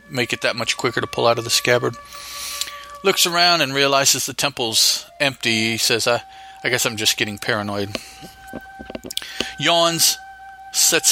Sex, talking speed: male, 155 wpm